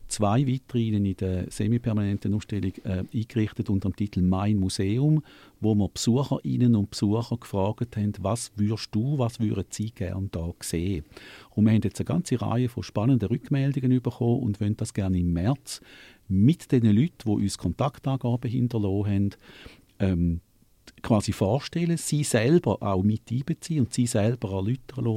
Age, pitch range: 50-69, 95-120 Hz